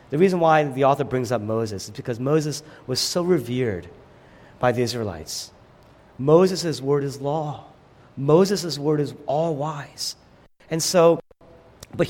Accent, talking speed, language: American, 145 wpm, English